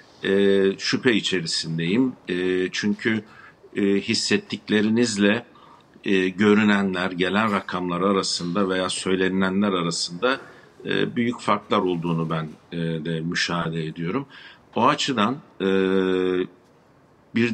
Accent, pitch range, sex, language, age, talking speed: native, 95-115 Hz, male, Turkish, 50-69, 95 wpm